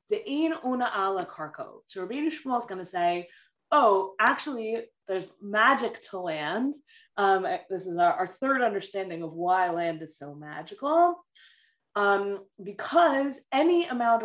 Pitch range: 180-235 Hz